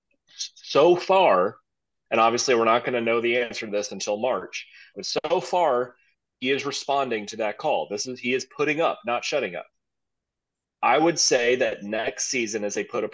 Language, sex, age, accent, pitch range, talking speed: English, male, 30-49, American, 115-145 Hz, 190 wpm